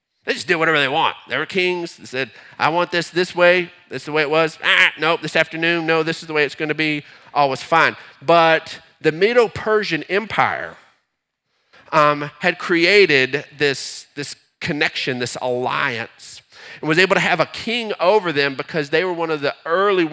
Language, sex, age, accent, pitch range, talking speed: English, male, 40-59, American, 150-195 Hz, 200 wpm